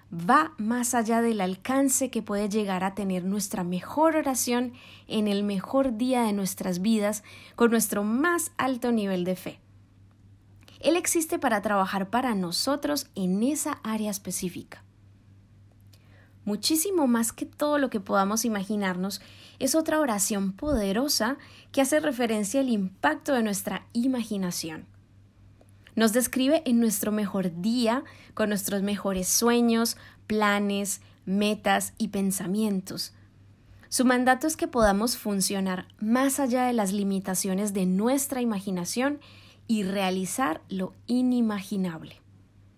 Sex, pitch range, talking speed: female, 185-245 Hz, 125 wpm